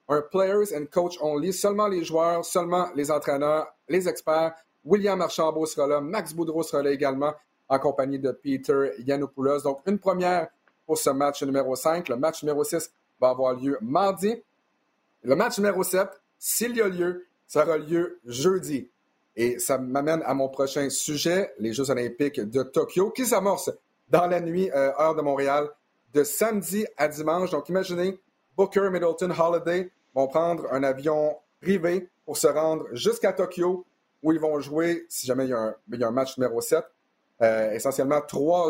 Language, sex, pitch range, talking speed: French, male, 140-180 Hz, 175 wpm